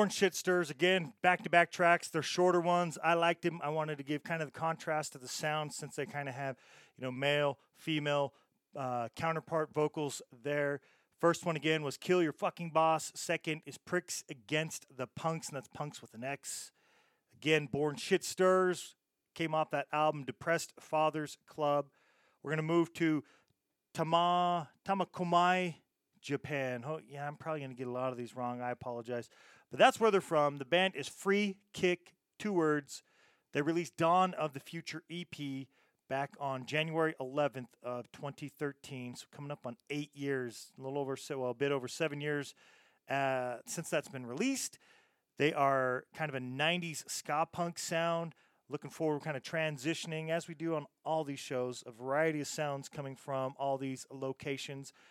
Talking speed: 175 wpm